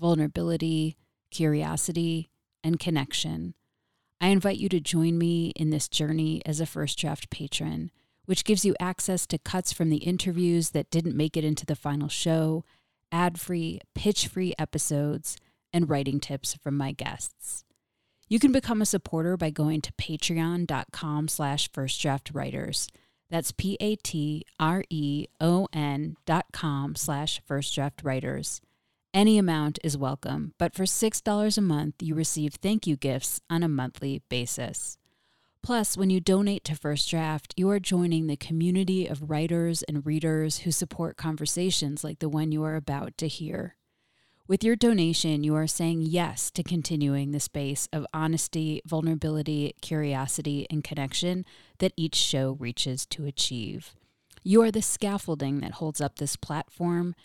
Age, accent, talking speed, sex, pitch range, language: 30-49, American, 145 wpm, female, 145-175 Hz, English